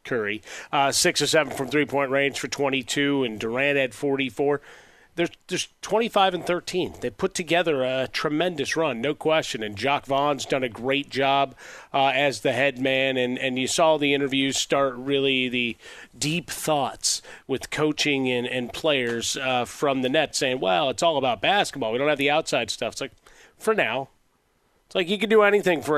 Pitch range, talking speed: 130-160 Hz, 190 wpm